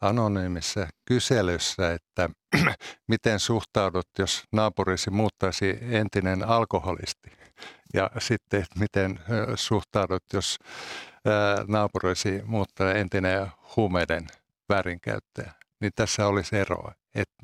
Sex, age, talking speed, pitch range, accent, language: male, 60-79, 85 wpm, 95-110 Hz, native, Finnish